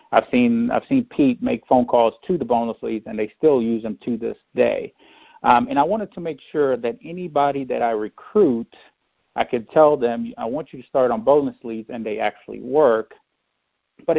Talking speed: 205 wpm